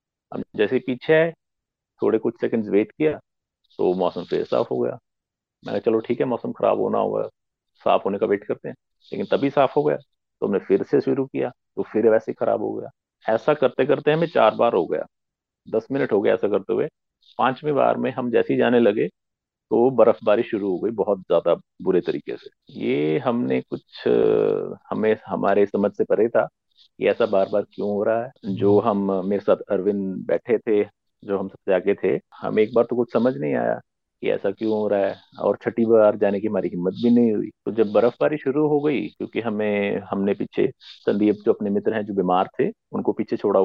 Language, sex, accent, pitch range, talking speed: Hindi, male, native, 100-155 Hz, 210 wpm